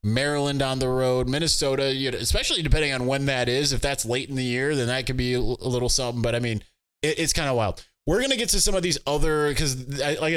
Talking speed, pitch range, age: 255 wpm, 105-135 Hz, 20-39